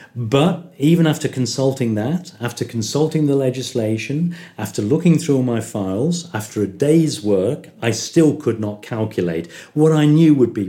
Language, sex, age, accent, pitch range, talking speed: English, male, 50-69, British, 90-135 Hz, 165 wpm